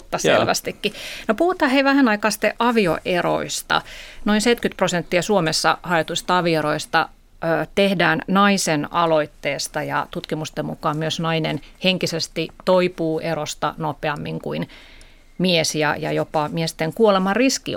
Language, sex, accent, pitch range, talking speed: Finnish, female, native, 160-195 Hz, 110 wpm